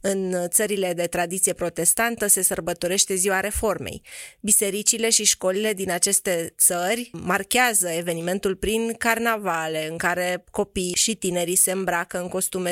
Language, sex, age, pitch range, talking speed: Romanian, female, 30-49, 180-220 Hz, 130 wpm